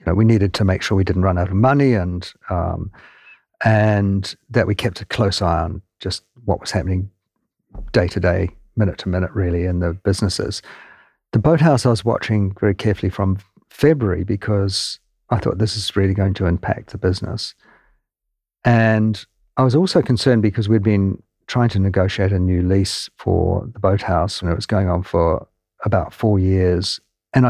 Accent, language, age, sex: British, English, 50-69, male